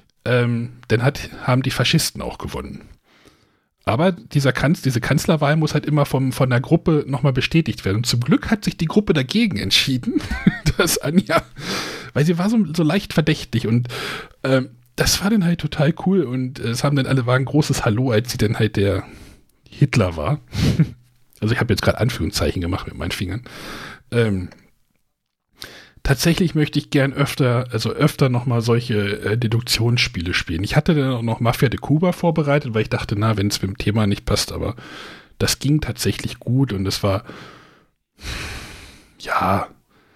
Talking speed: 175 wpm